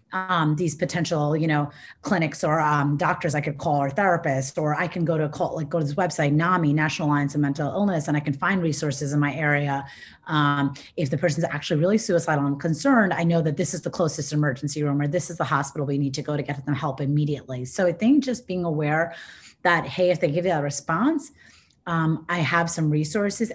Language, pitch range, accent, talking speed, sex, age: English, 150-185 Hz, American, 230 wpm, female, 30-49